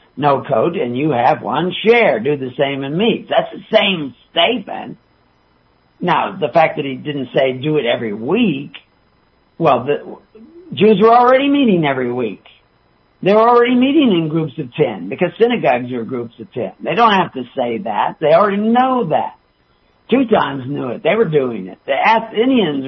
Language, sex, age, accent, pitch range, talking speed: English, male, 60-79, American, 130-190 Hz, 180 wpm